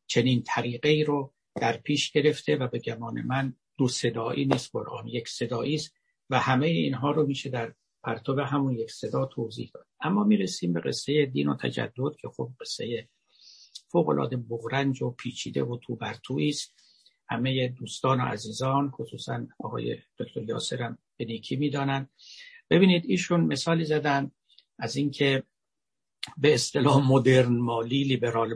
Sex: male